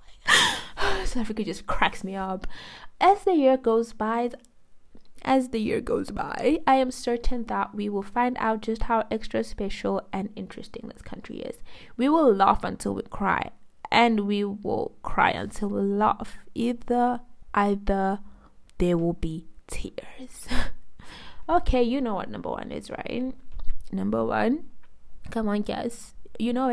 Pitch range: 200-250 Hz